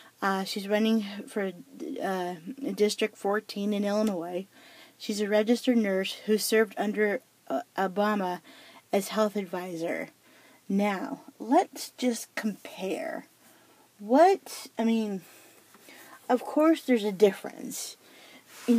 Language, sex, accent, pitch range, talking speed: English, female, American, 200-240 Hz, 110 wpm